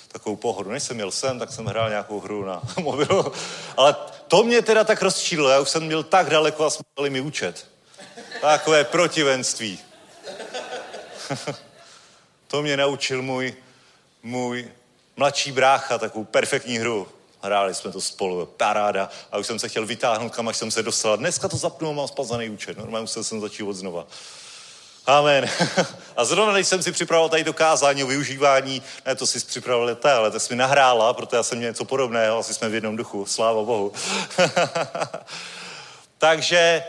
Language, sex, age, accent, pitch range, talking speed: Czech, male, 30-49, native, 115-150 Hz, 170 wpm